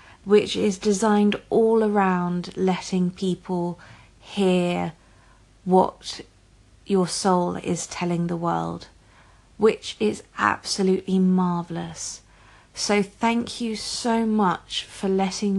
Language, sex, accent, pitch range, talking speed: English, female, British, 170-205 Hz, 100 wpm